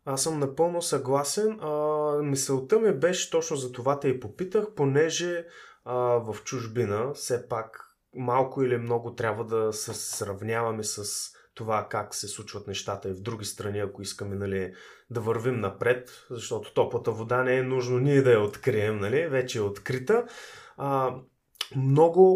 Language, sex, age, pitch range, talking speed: Bulgarian, male, 20-39, 115-150 Hz, 160 wpm